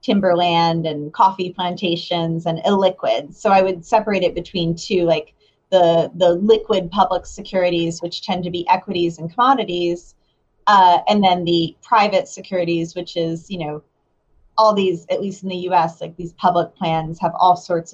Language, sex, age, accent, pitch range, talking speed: English, female, 30-49, American, 175-205 Hz, 165 wpm